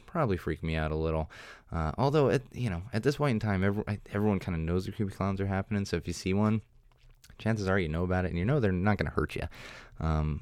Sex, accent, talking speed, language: male, American, 265 wpm, English